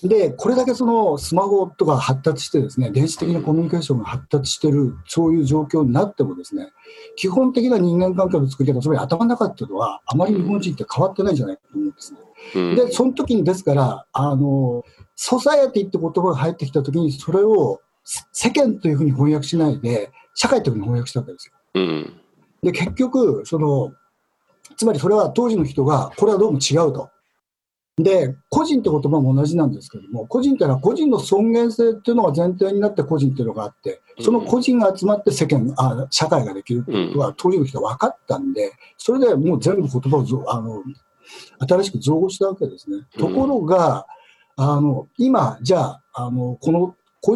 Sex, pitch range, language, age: male, 140-230 Hz, Japanese, 60-79